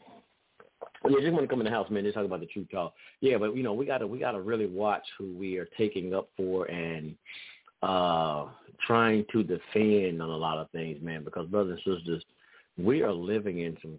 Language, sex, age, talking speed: English, male, 50-69, 215 wpm